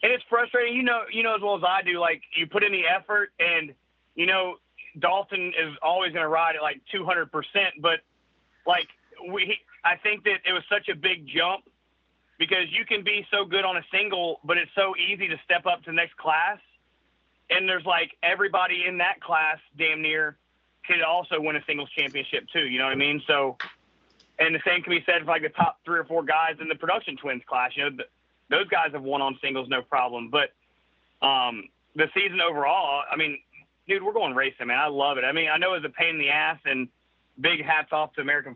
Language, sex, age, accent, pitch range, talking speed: English, male, 30-49, American, 140-185 Hz, 225 wpm